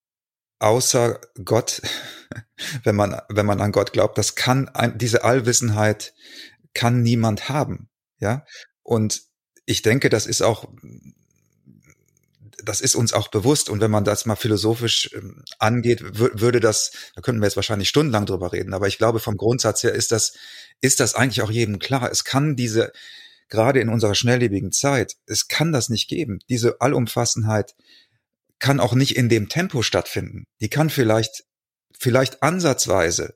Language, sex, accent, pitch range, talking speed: German, male, German, 110-130 Hz, 155 wpm